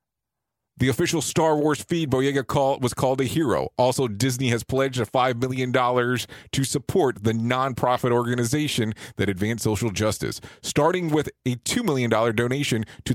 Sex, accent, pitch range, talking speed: male, American, 115-150 Hz, 145 wpm